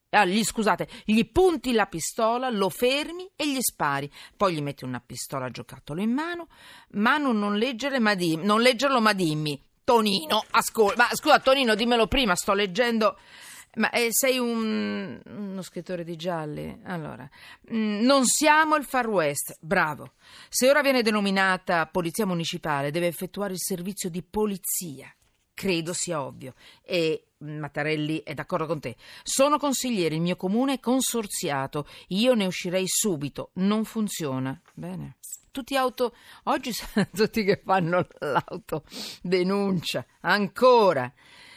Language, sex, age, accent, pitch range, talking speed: Italian, female, 40-59, native, 165-235 Hz, 140 wpm